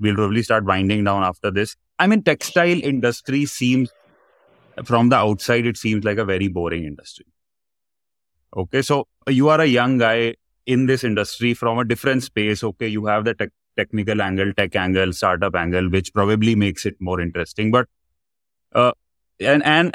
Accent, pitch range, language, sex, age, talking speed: Indian, 105-135 Hz, English, male, 30-49, 170 wpm